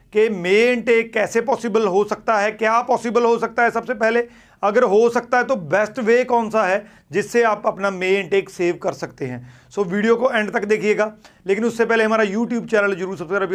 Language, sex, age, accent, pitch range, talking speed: Hindi, male, 40-59, native, 190-230 Hz, 215 wpm